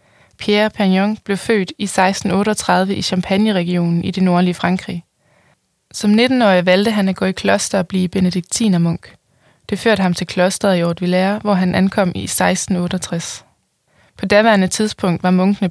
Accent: native